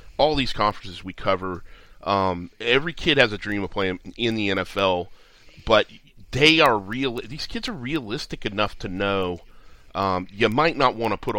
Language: English